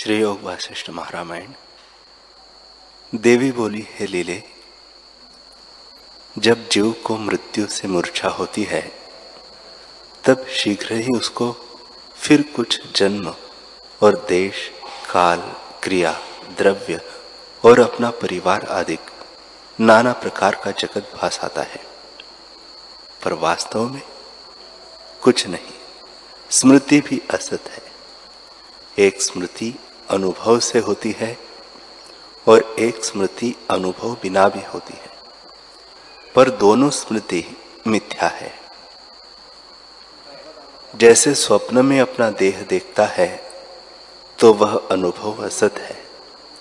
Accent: native